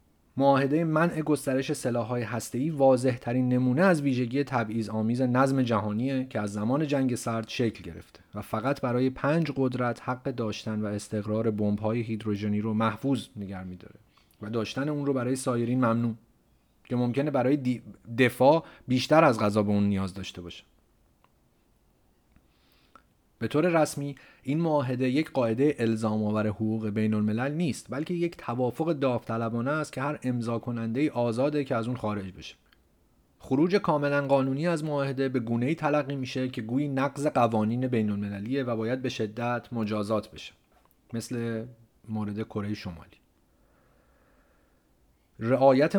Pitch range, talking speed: 110-135 Hz, 140 wpm